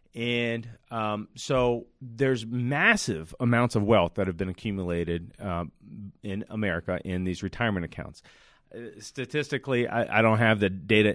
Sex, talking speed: male, 145 wpm